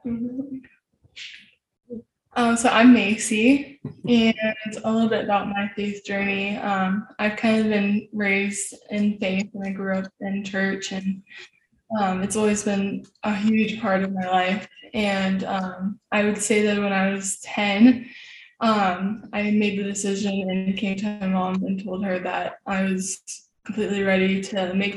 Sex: female